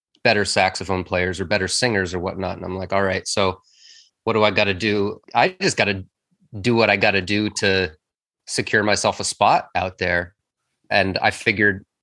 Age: 30-49